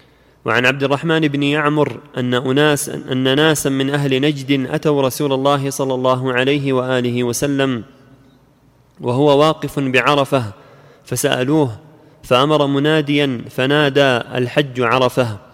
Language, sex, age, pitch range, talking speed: Arabic, male, 30-49, 125-145 Hz, 110 wpm